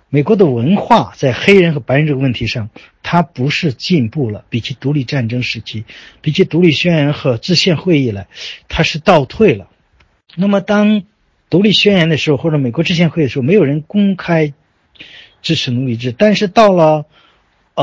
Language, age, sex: Chinese, 50-69, male